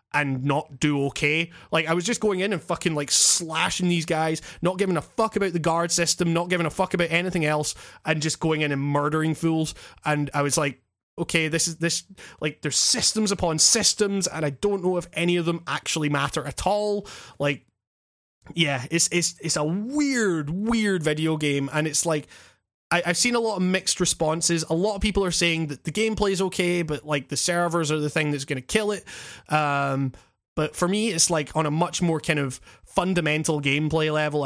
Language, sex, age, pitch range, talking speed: English, male, 20-39, 140-175 Hz, 210 wpm